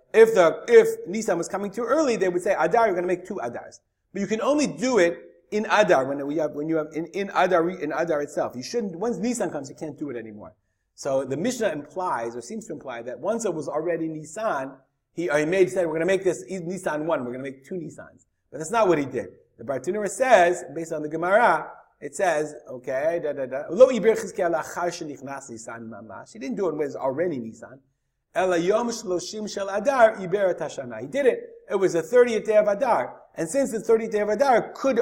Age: 30-49